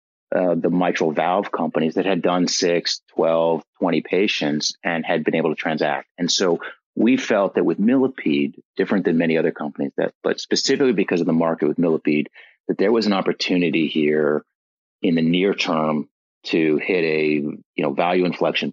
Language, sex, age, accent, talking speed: English, male, 30-49, American, 180 wpm